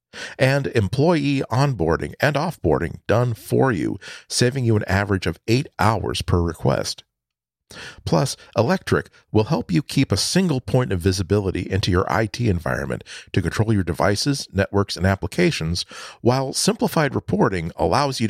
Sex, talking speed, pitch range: male, 145 wpm, 85-125 Hz